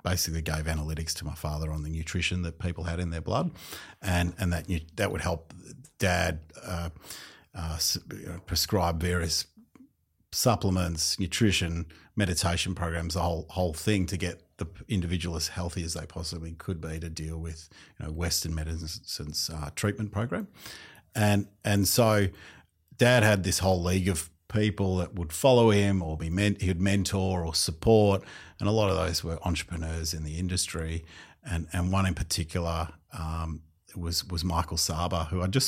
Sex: male